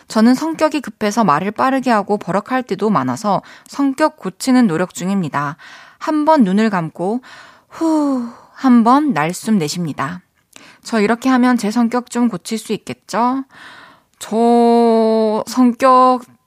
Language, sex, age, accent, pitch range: Korean, female, 20-39, native, 185-260 Hz